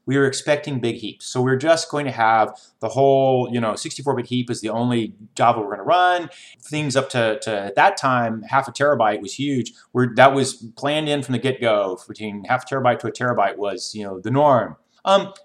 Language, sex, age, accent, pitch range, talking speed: English, male, 30-49, American, 120-160 Hz, 225 wpm